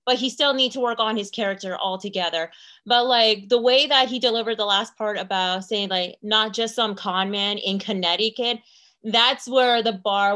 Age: 30-49